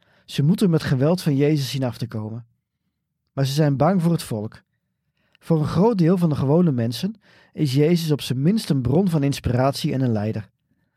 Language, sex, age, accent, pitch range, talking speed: Dutch, male, 40-59, Dutch, 120-155 Hz, 200 wpm